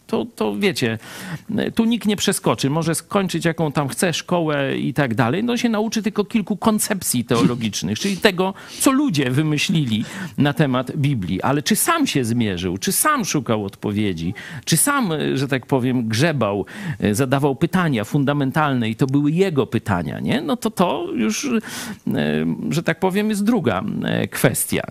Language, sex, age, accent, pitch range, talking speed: Polish, male, 50-69, native, 125-195 Hz, 160 wpm